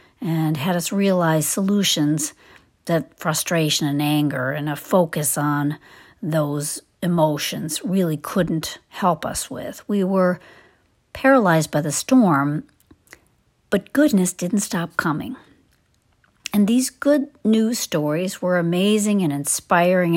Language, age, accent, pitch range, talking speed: English, 50-69, American, 155-200 Hz, 120 wpm